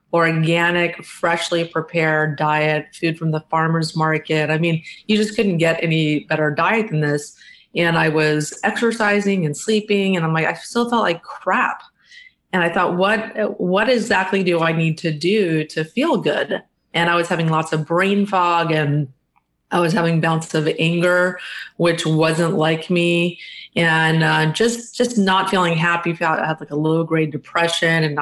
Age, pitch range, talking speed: 30-49, 160-190 Hz, 170 wpm